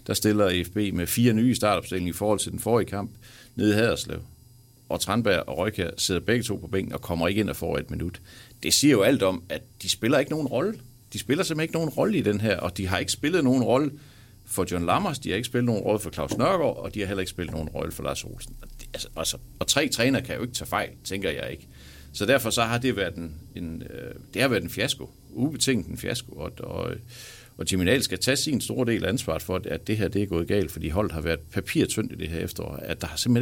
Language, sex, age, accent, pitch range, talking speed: Danish, male, 60-79, native, 90-120 Hz, 250 wpm